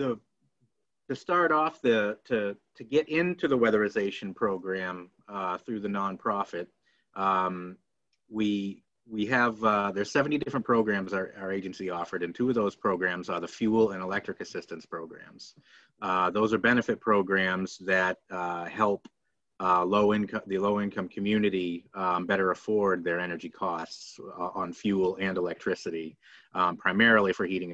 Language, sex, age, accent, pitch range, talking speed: English, male, 30-49, American, 90-105 Hz, 150 wpm